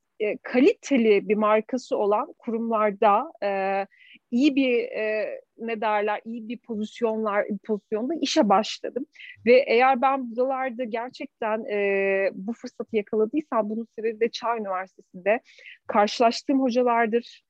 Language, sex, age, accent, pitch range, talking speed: Turkish, female, 40-59, native, 205-255 Hz, 115 wpm